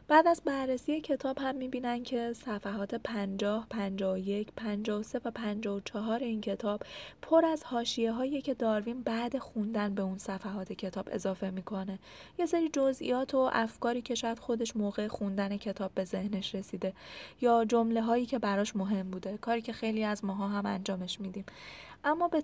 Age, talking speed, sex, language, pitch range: 20-39, 160 wpm, female, Persian, 205-250 Hz